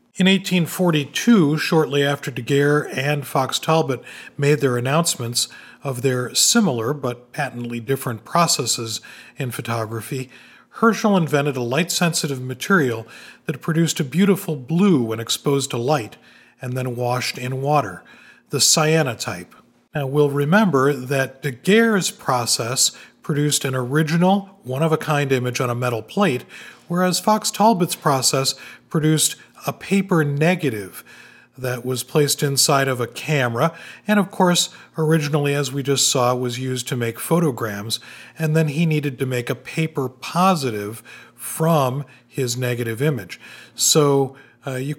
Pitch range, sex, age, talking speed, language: 125-165 Hz, male, 40-59, 135 wpm, English